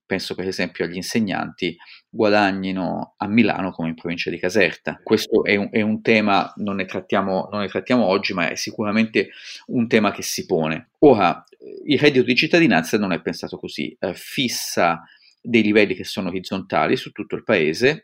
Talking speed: 175 wpm